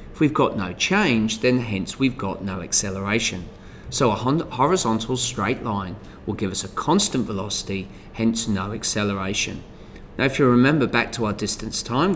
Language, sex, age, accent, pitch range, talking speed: English, male, 30-49, British, 95-115 Hz, 165 wpm